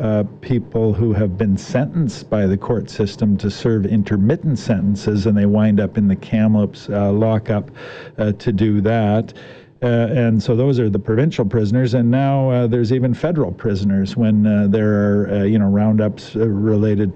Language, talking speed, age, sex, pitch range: English, 180 wpm, 50-69, male, 100-115 Hz